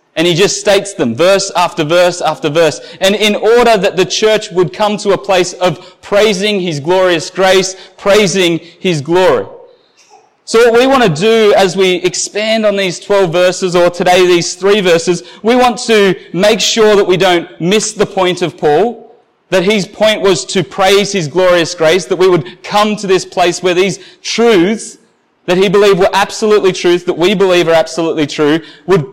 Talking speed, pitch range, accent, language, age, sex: 190 wpm, 170-210 Hz, Australian, English, 20-39, male